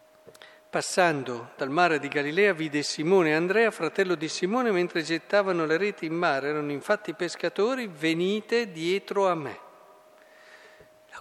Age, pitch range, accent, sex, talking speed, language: 50-69, 135-180 Hz, native, male, 140 wpm, Italian